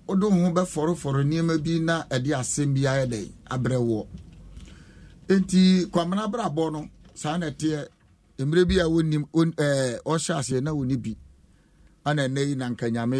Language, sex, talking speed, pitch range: English, male, 145 wpm, 125-165 Hz